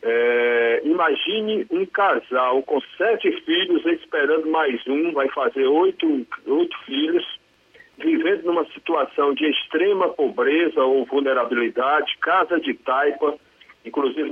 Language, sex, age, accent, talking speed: Portuguese, male, 60-79, Brazilian, 110 wpm